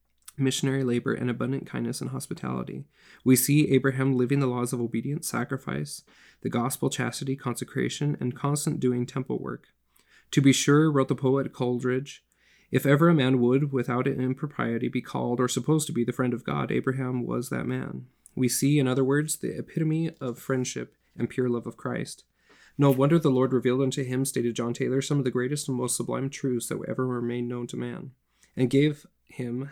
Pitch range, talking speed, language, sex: 120-140 Hz, 195 wpm, English, male